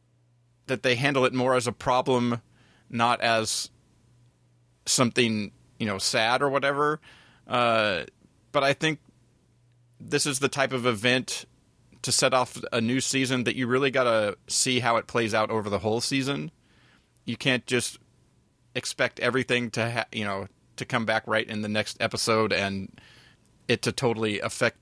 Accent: American